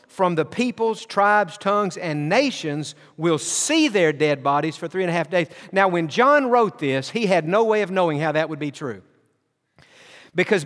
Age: 50-69